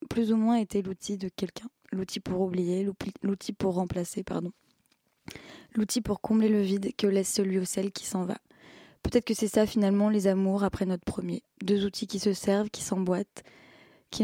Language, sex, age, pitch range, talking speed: French, female, 20-39, 195-230 Hz, 190 wpm